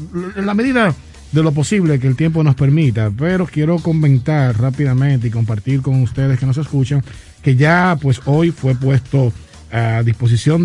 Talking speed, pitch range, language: 170 wpm, 120-150 Hz, Spanish